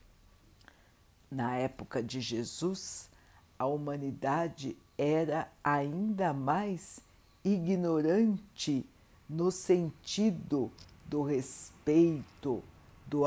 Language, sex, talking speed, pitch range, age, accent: Portuguese, female, 70 wpm, 125-195 Hz, 60-79, Brazilian